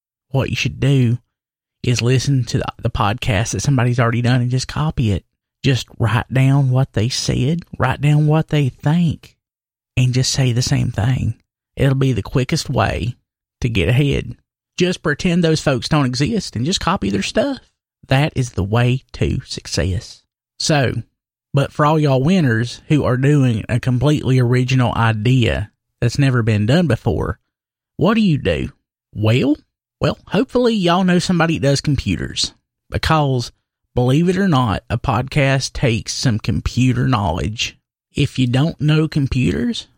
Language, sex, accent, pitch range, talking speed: English, male, American, 120-150 Hz, 160 wpm